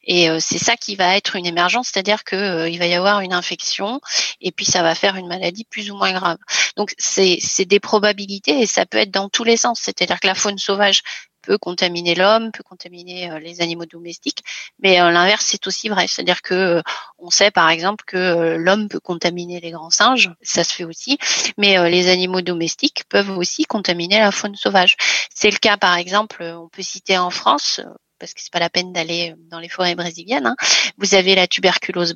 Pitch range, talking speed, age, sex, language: 175-205 Hz, 220 wpm, 30-49, female, French